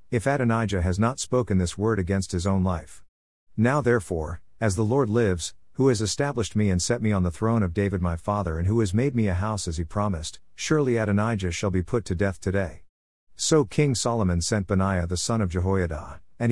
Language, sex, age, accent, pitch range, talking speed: English, male, 50-69, American, 90-115 Hz, 215 wpm